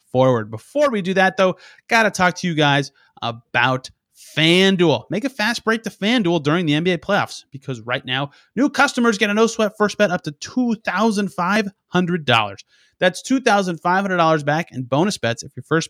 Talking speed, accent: 175 wpm, American